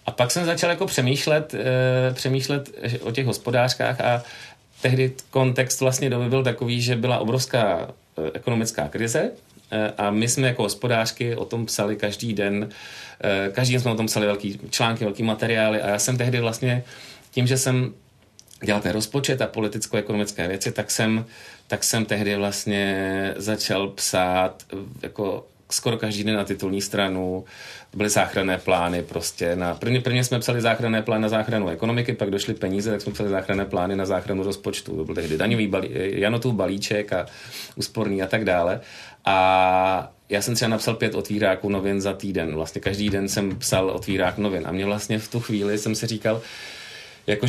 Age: 40-59